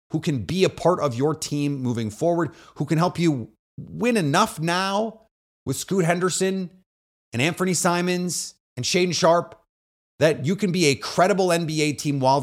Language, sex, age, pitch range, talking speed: English, male, 30-49, 115-175 Hz, 170 wpm